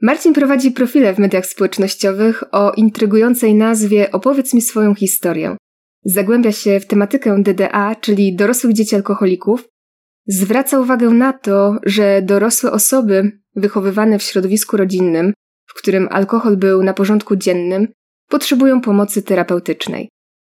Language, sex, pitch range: Polish, female, 200-235 Hz